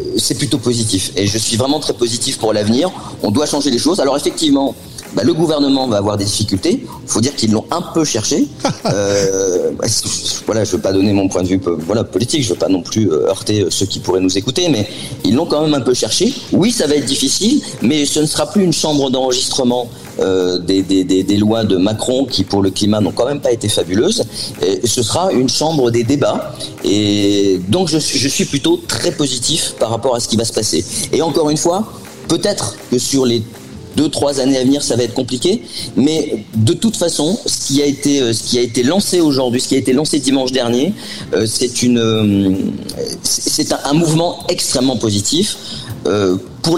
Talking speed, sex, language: 210 wpm, male, French